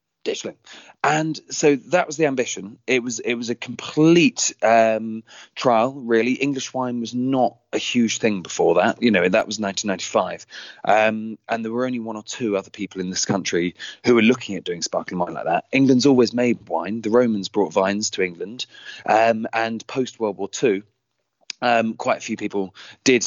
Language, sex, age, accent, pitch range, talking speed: English, male, 30-49, British, 100-125 Hz, 190 wpm